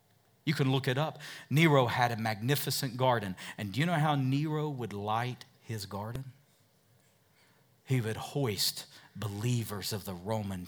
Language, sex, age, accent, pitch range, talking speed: English, male, 40-59, American, 110-145 Hz, 150 wpm